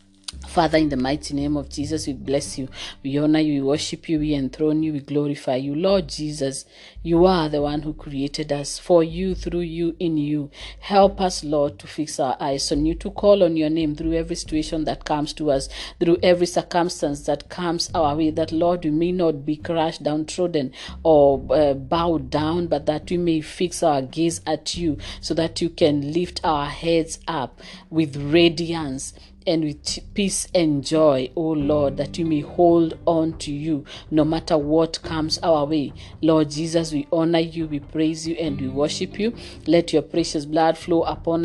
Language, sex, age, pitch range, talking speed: English, female, 40-59, 145-165 Hz, 195 wpm